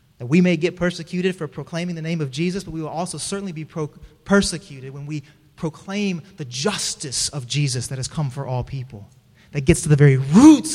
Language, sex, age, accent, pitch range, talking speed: English, male, 30-49, American, 145-230 Hz, 210 wpm